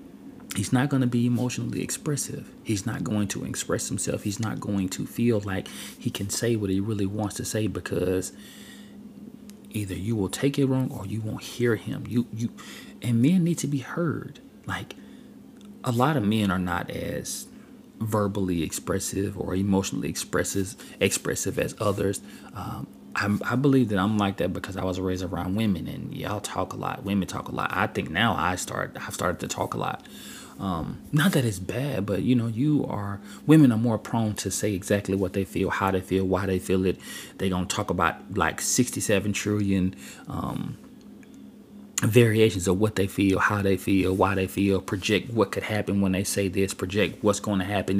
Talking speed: 195 wpm